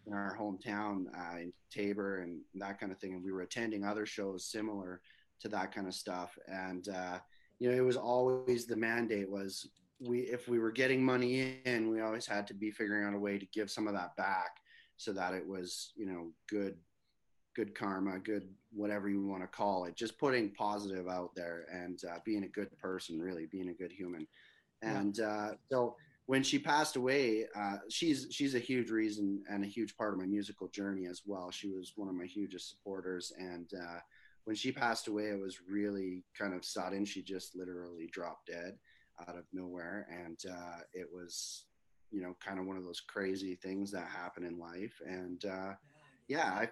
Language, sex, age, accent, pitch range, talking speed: English, male, 30-49, American, 90-110 Hz, 205 wpm